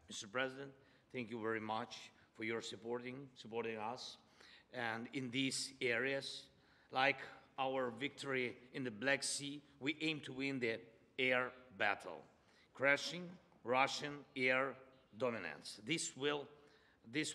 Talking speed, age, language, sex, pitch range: 125 wpm, 50-69, Russian, male, 120-140 Hz